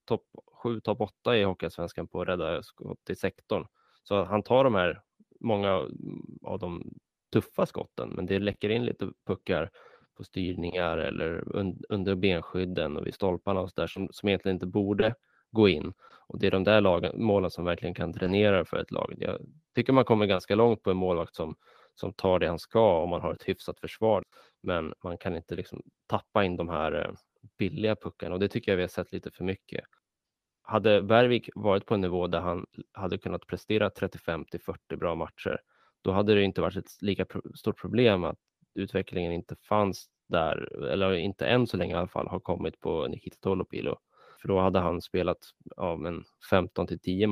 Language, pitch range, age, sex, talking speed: Swedish, 90-105 Hz, 20-39, male, 190 wpm